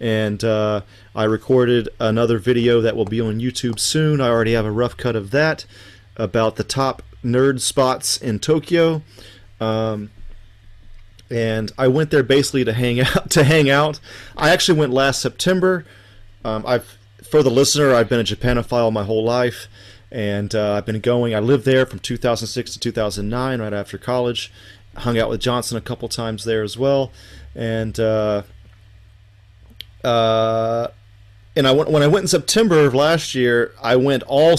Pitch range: 105-135 Hz